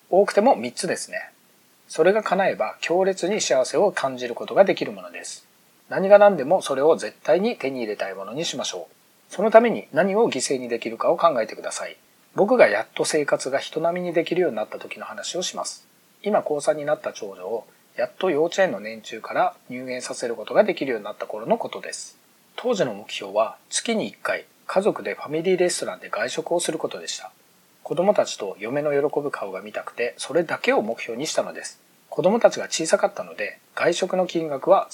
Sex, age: male, 40-59